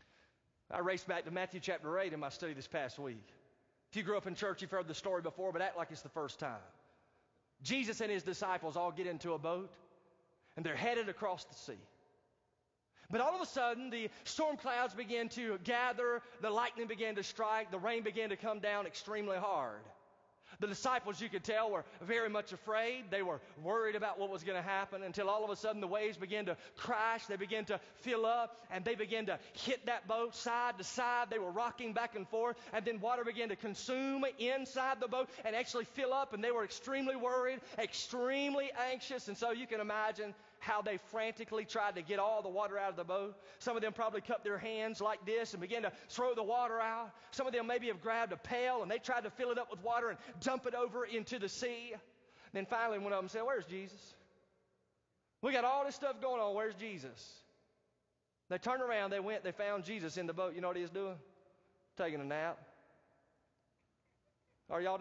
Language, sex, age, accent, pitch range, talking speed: English, male, 30-49, American, 195-240 Hz, 220 wpm